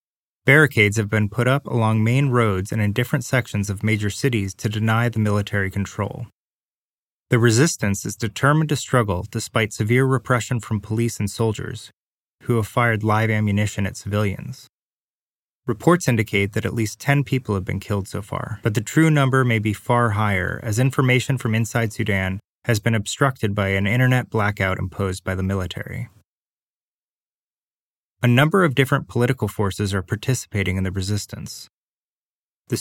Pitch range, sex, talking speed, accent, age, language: 100-125 Hz, male, 160 wpm, American, 20-39, English